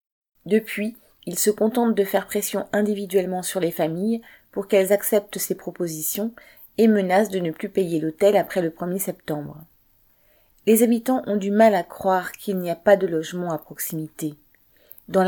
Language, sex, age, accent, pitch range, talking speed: French, female, 30-49, French, 165-215 Hz, 170 wpm